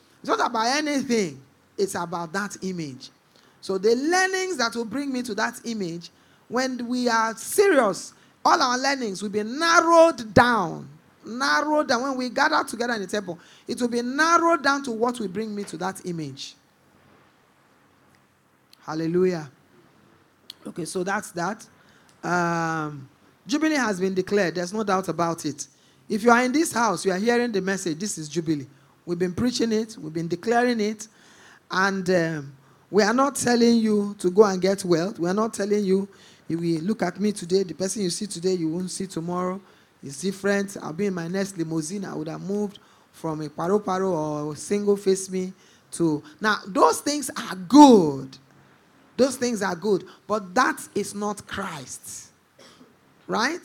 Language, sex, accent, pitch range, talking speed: English, male, Nigerian, 175-240 Hz, 175 wpm